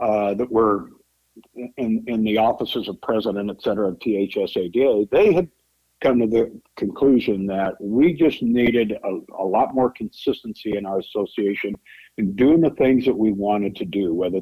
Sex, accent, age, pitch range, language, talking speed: male, American, 60-79, 100-120 Hz, English, 170 wpm